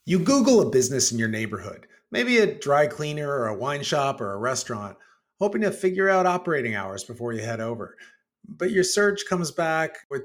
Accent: American